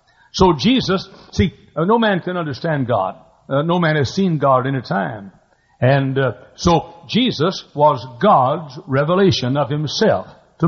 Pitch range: 135-190 Hz